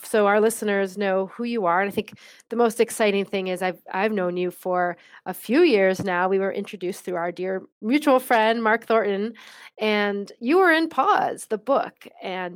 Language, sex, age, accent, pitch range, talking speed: English, female, 30-49, American, 180-215 Hz, 200 wpm